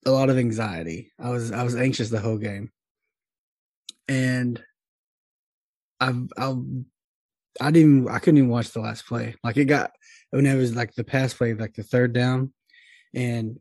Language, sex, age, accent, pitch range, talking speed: English, male, 20-39, American, 115-135 Hz, 185 wpm